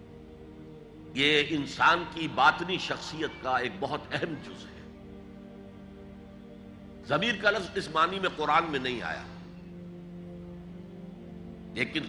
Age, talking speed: 60-79, 105 wpm